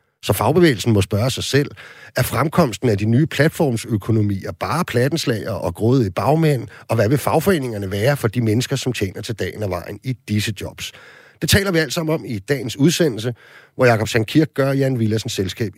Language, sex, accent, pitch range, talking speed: Danish, male, native, 105-135 Hz, 195 wpm